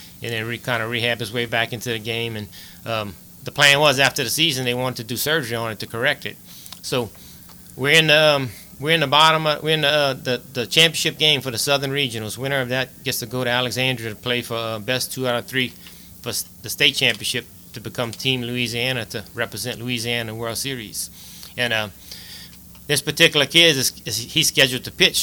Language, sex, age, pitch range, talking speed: English, male, 30-49, 115-135 Hz, 225 wpm